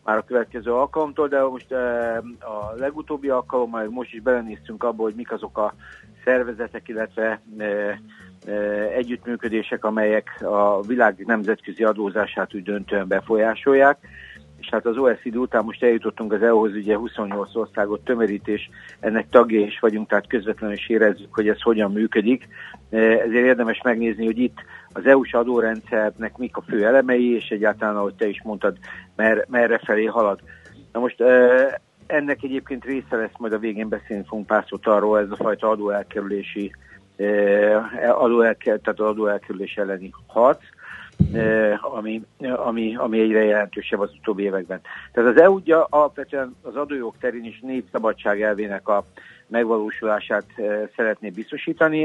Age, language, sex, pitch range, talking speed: 60-79, Hungarian, male, 105-120 Hz, 140 wpm